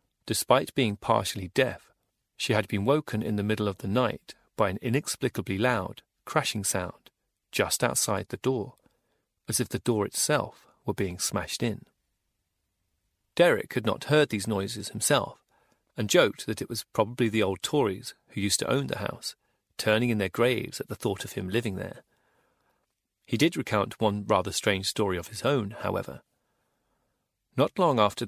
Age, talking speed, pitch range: 40-59, 170 wpm, 100-125 Hz